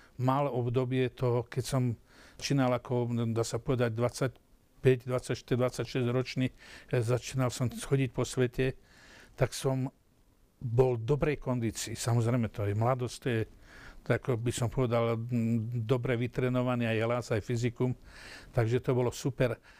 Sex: male